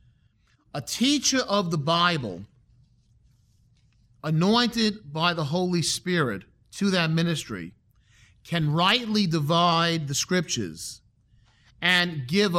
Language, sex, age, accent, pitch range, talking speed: English, male, 40-59, American, 120-175 Hz, 95 wpm